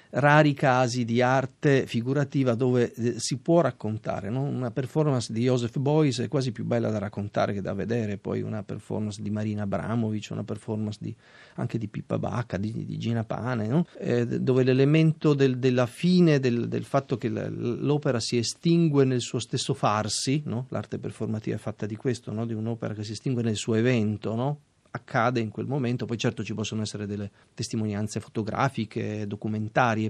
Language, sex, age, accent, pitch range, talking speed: Italian, male, 40-59, native, 110-135 Hz, 180 wpm